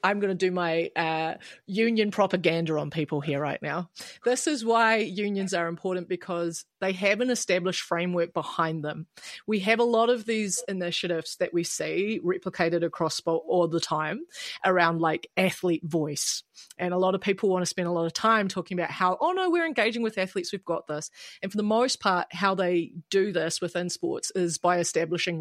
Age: 30-49